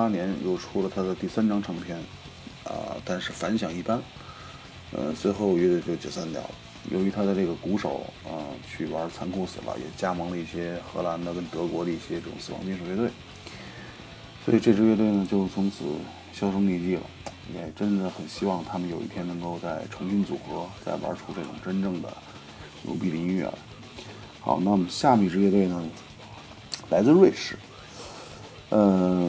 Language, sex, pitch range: Chinese, male, 85-100 Hz